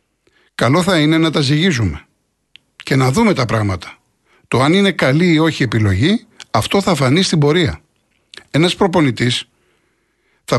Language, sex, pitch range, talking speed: Greek, male, 115-165 Hz, 145 wpm